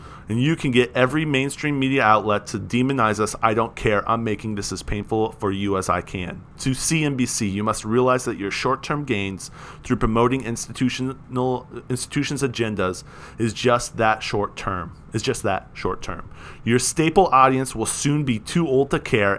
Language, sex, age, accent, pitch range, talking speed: English, male, 30-49, American, 100-130 Hz, 180 wpm